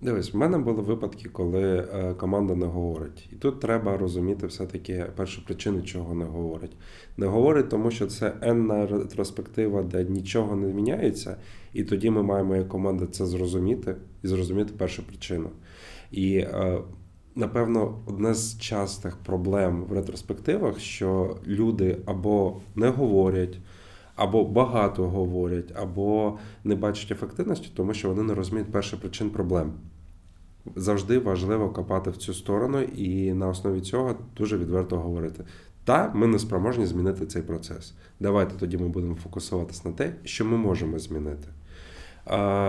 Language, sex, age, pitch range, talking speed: Ukrainian, male, 20-39, 90-105 Hz, 145 wpm